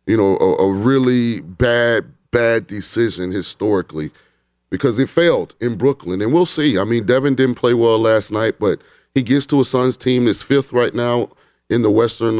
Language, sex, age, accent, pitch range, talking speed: English, male, 30-49, American, 110-130 Hz, 190 wpm